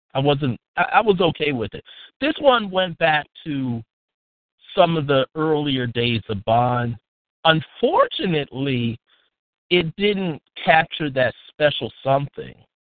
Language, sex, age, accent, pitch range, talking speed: English, male, 50-69, American, 130-180 Hz, 120 wpm